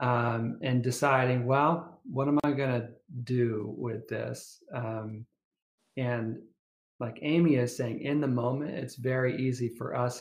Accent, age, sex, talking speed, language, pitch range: American, 40-59, male, 155 wpm, English, 115-135 Hz